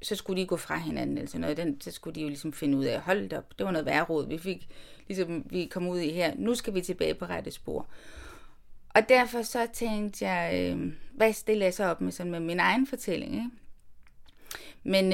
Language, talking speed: Danish, 235 wpm